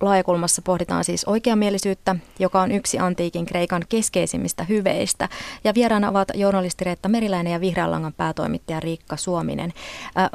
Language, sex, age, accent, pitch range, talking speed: Finnish, female, 30-49, native, 160-195 Hz, 130 wpm